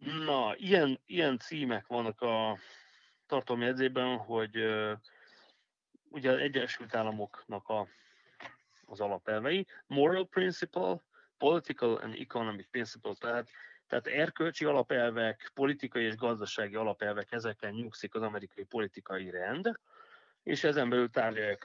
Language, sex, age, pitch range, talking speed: Hungarian, male, 30-49, 105-130 Hz, 110 wpm